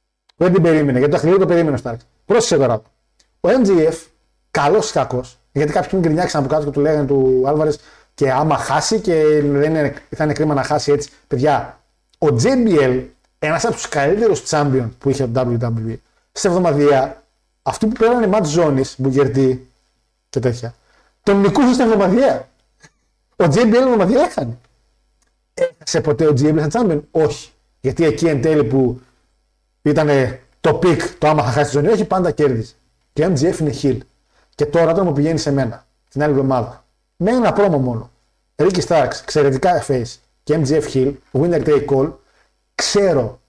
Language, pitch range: Greek, 130-175 Hz